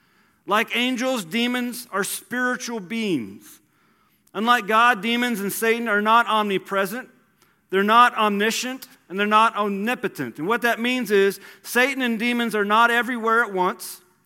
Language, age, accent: English, 40-59, American